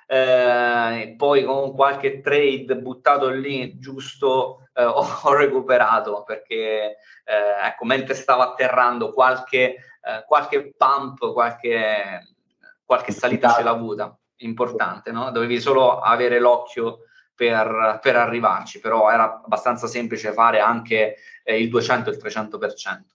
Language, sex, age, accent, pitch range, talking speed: Italian, male, 20-39, native, 120-165 Hz, 125 wpm